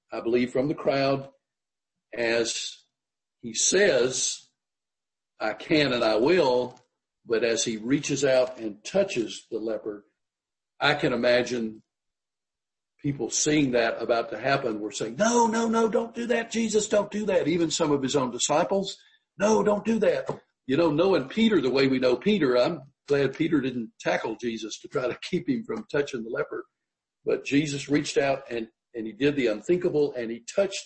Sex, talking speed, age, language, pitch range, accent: male, 175 wpm, 50-69, English, 120-185 Hz, American